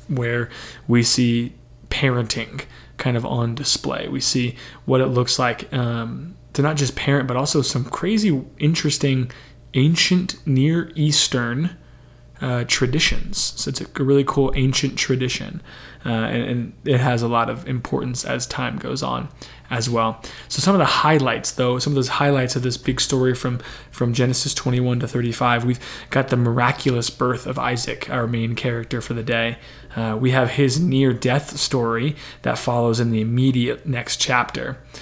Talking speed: 165 wpm